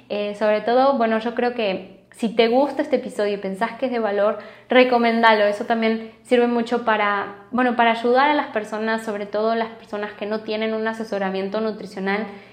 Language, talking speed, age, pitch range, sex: Spanish, 190 wpm, 20-39, 205-245 Hz, female